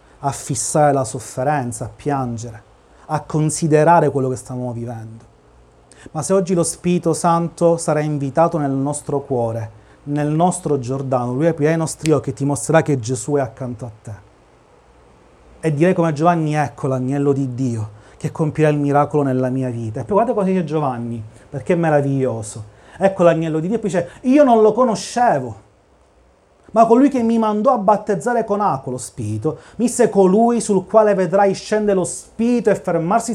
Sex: male